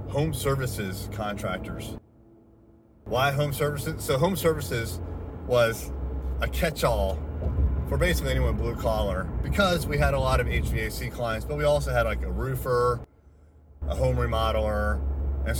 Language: English